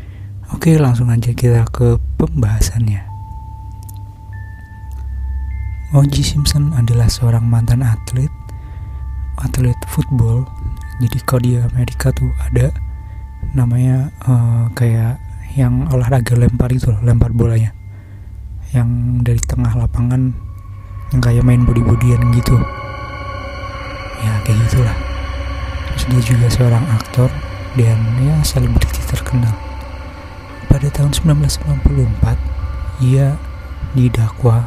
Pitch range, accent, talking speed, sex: 90-125 Hz, native, 95 wpm, male